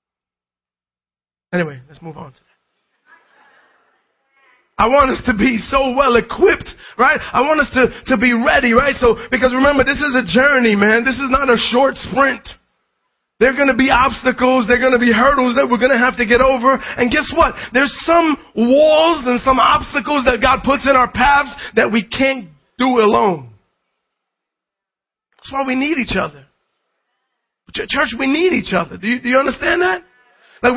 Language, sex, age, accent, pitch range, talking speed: English, male, 30-49, American, 235-285 Hz, 185 wpm